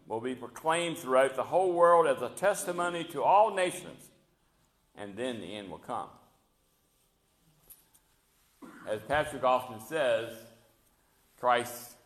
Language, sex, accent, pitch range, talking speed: English, male, American, 110-140 Hz, 120 wpm